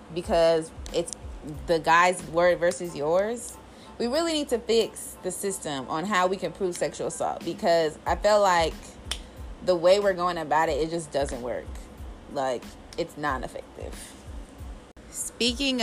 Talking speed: 150 wpm